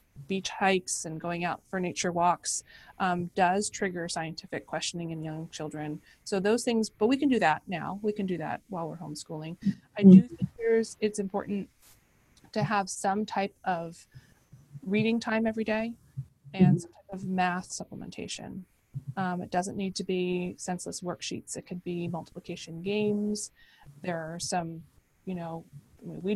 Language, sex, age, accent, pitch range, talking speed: English, female, 30-49, American, 160-195 Hz, 165 wpm